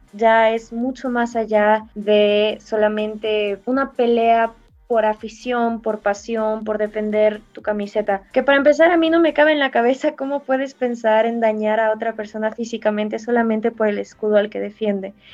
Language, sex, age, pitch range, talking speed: Spanish, female, 20-39, 210-245 Hz, 170 wpm